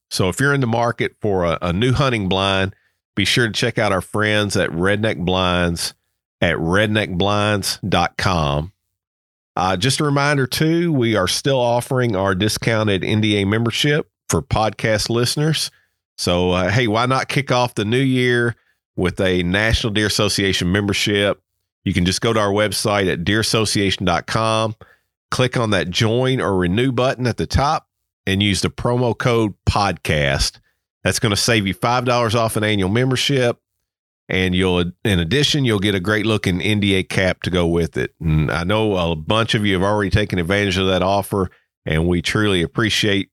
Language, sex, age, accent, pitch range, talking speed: English, male, 40-59, American, 90-120 Hz, 170 wpm